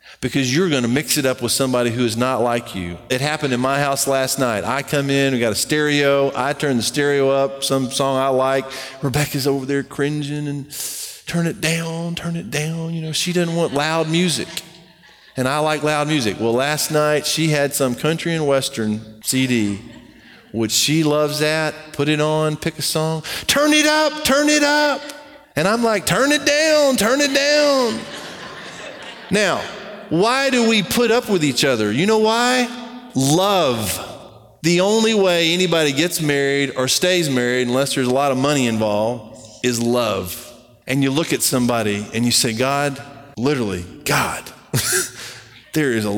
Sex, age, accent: male, 40-59, American